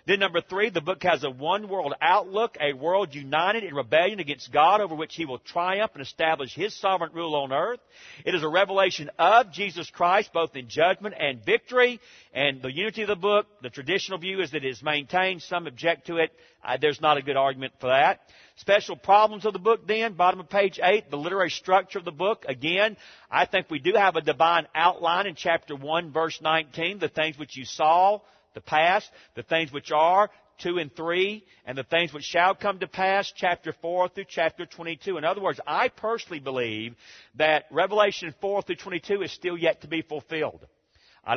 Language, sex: English, male